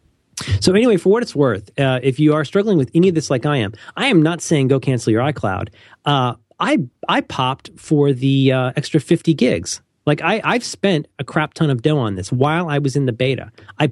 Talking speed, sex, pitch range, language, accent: 235 wpm, male, 120-165 Hz, English, American